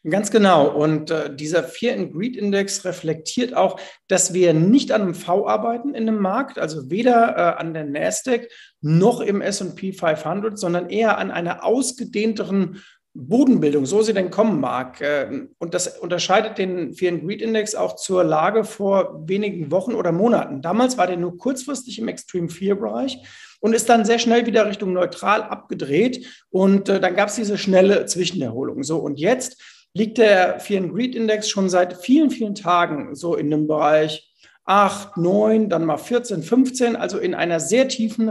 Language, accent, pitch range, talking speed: German, German, 170-230 Hz, 175 wpm